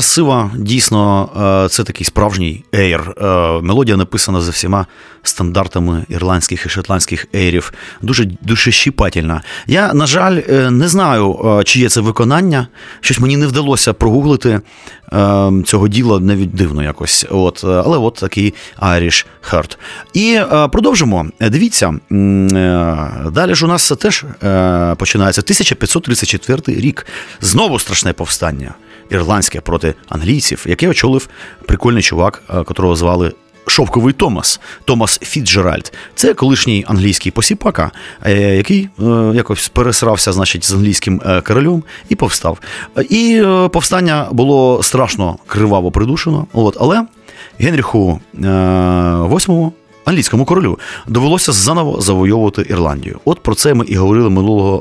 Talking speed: 115 wpm